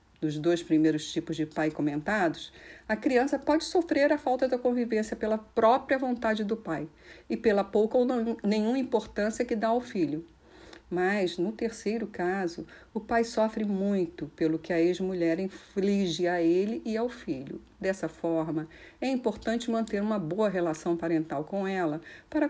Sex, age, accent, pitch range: female, 50-69, Brazilian, 170-235 Hz